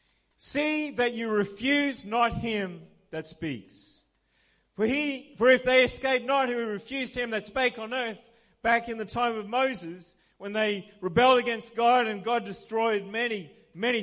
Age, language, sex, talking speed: 40-59, English, male, 165 wpm